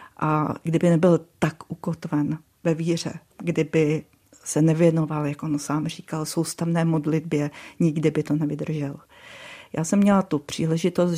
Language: Czech